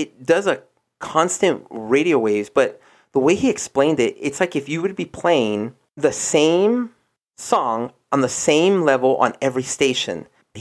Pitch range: 125-205 Hz